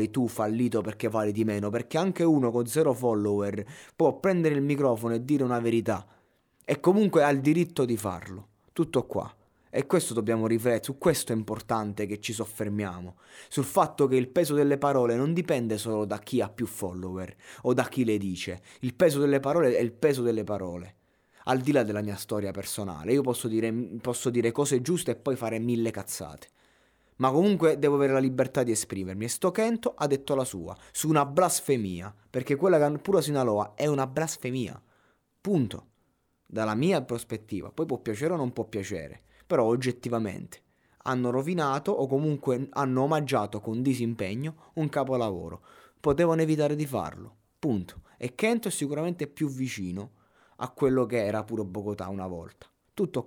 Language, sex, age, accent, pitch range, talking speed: Italian, male, 20-39, native, 105-140 Hz, 175 wpm